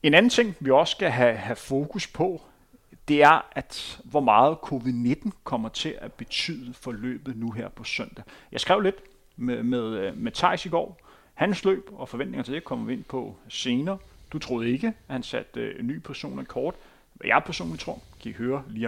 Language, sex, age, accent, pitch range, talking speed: Danish, male, 30-49, native, 125-185 Hz, 205 wpm